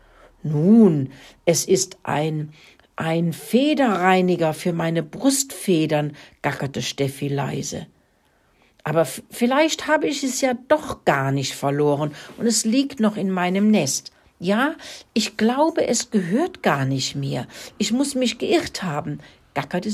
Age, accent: 60-79, German